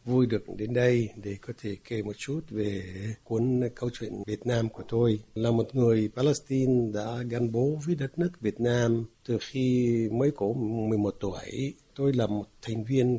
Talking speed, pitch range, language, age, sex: 190 wpm, 105-130 Hz, Vietnamese, 60-79, male